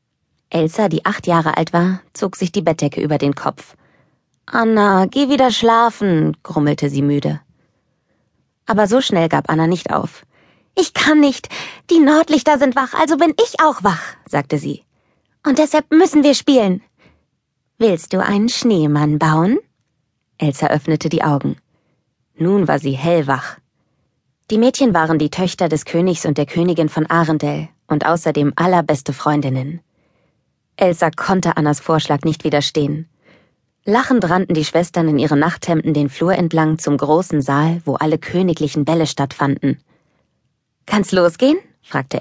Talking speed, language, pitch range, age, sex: 145 wpm, German, 150-200 Hz, 20-39, female